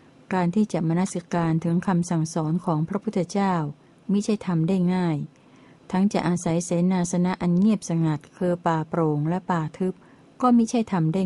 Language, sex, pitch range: Thai, female, 165-195 Hz